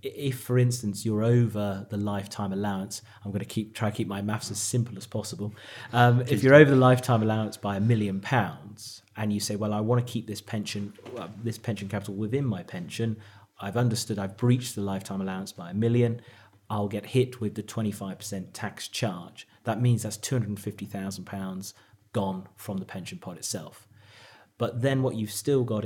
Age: 30-49